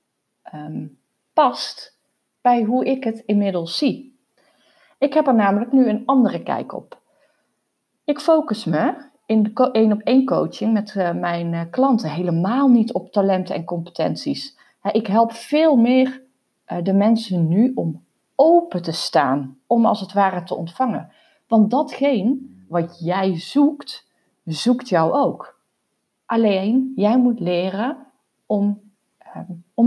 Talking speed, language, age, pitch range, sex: 140 wpm, Dutch, 30-49, 195-260 Hz, female